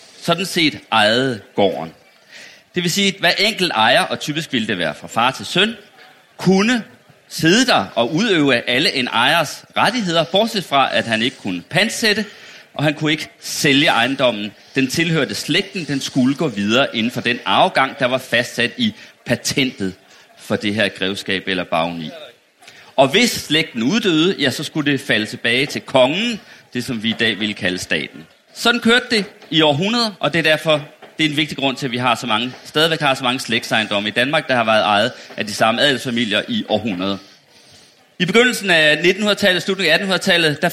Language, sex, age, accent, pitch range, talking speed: Danish, male, 30-49, native, 125-170 Hz, 190 wpm